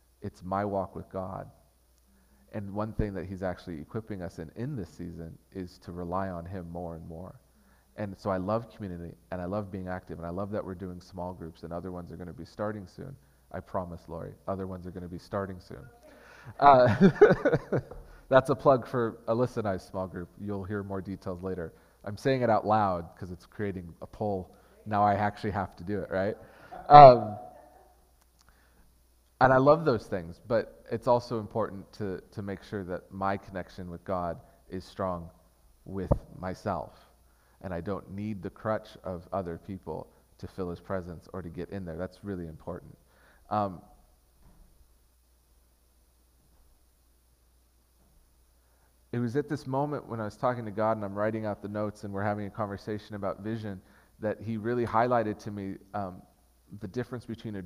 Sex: male